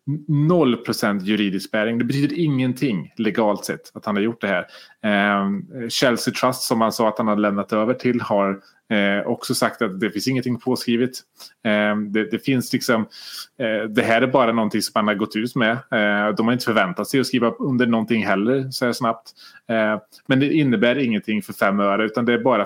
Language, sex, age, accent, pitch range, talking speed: Swedish, male, 30-49, Norwegian, 105-130 Hz, 190 wpm